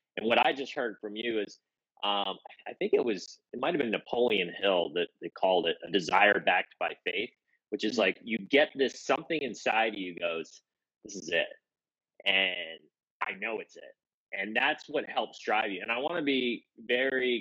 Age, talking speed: 30-49, 200 wpm